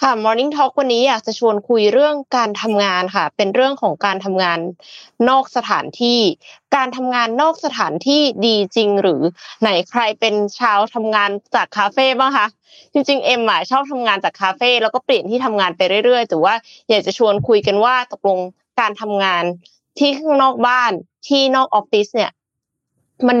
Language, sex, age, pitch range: Thai, female, 20-39, 190-255 Hz